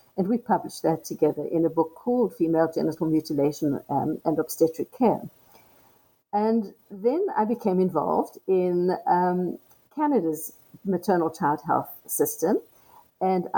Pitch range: 160-205 Hz